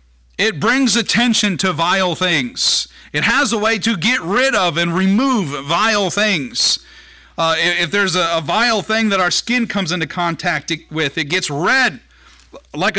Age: 50-69